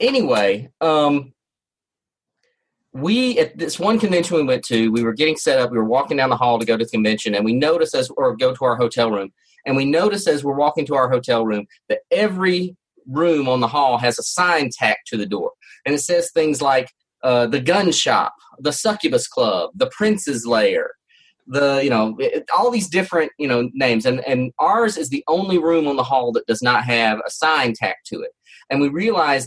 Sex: male